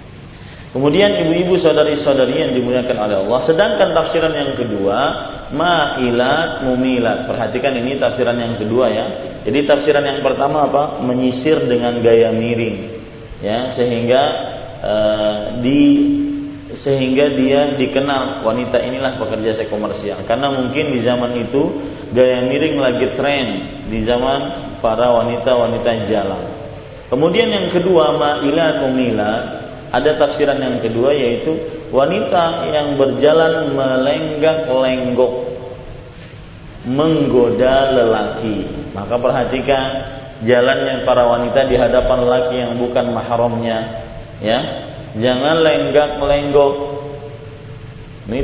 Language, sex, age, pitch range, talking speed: Malay, male, 30-49, 120-150 Hz, 105 wpm